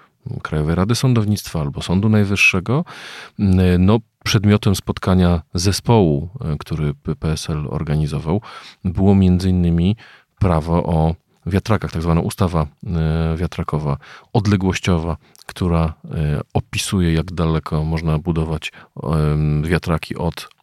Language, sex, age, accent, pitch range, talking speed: Polish, male, 40-59, native, 80-105 Hz, 95 wpm